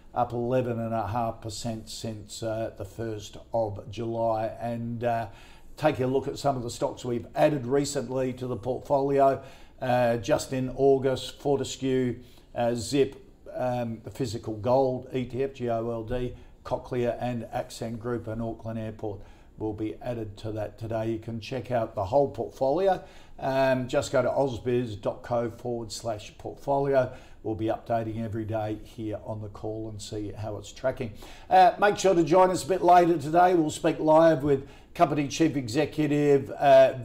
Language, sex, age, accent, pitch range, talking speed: English, male, 50-69, Australian, 115-135 Hz, 165 wpm